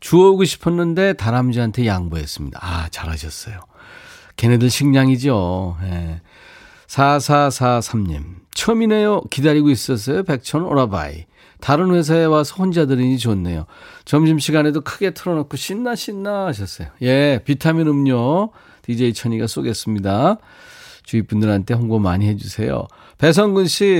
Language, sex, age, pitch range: Korean, male, 40-59, 100-150 Hz